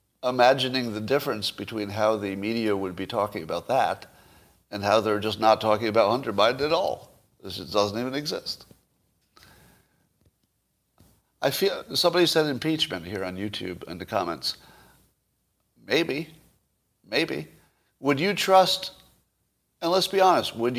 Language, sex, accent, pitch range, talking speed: English, male, American, 105-145 Hz, 140 wpm